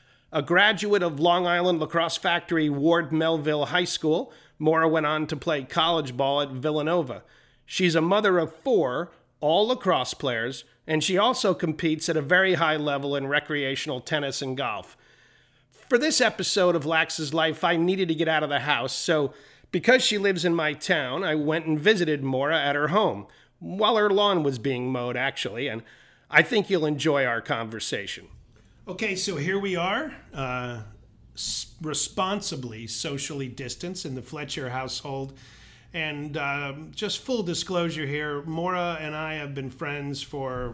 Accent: American